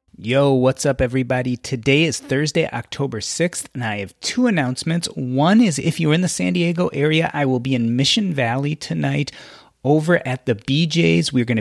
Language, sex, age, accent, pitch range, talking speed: English, male, 30-49, American, 120-150 Hz, 185 wpm